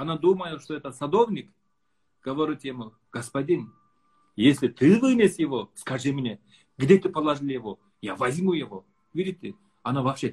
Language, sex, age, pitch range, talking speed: Russian, male, 40-59, 130-185 Hz, 140 wpm